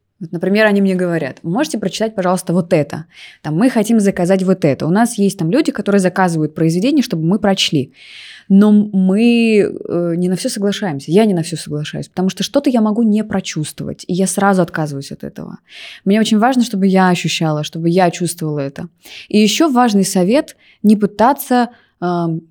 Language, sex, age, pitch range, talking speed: Russian, female, 20-39, 170-210 Hz, 185 wpm